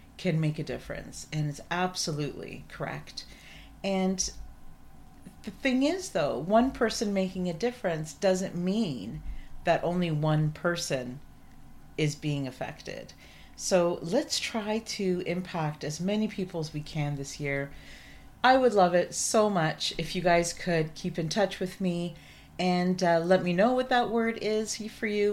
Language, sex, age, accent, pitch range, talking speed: English, female, 40-59, American, 155-200 Hz, 155 wpm